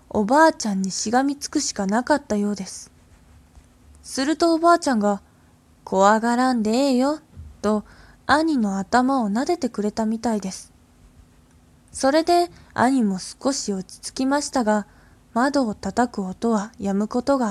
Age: 20-39